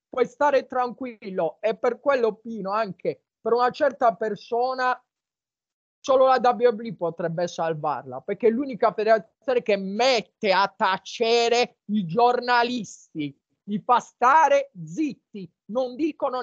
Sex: male